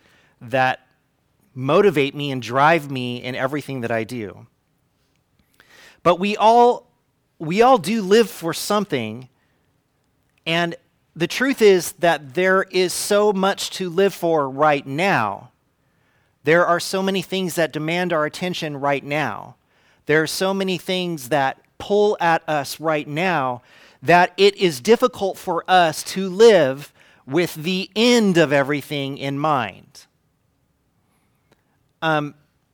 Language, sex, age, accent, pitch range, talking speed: English, male, 40-59, American, 140-185 Hz, 130 wpm